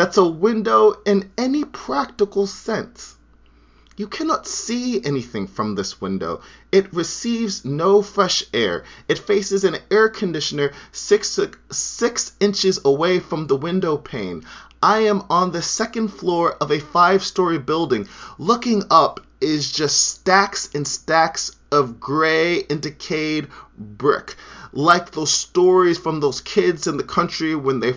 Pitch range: 130-185 Hz